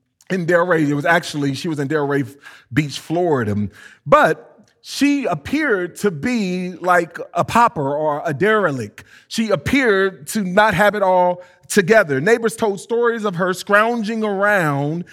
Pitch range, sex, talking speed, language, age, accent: 150-205 Hz, male, 145 wpm, English, 30-49, American